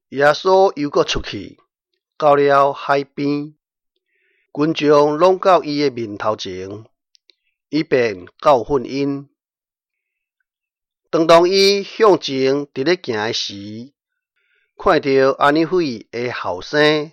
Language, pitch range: Chinese, 125-175 Hz